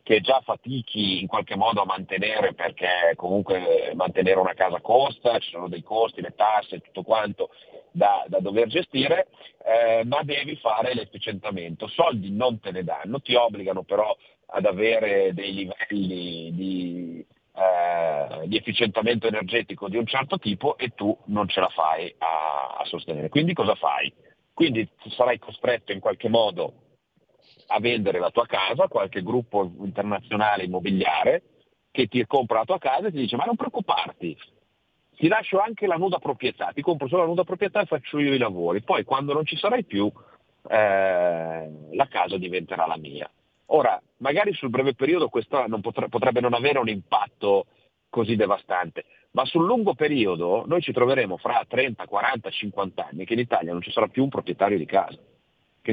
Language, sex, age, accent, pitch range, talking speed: Italian, male, 40-59, native, 95-150 Hz, 170 wpm